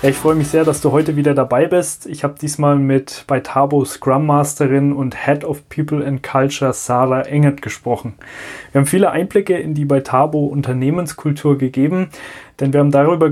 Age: 20-39